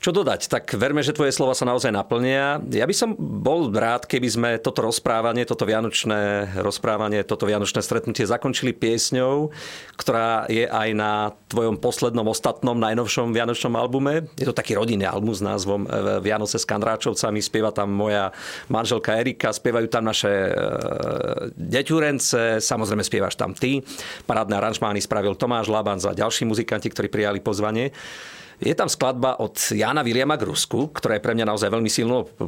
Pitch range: 105-125 Hz